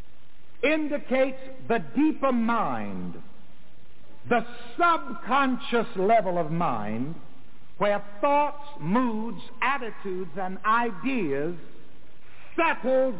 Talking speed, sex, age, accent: 75 wpm, male, 60-79, American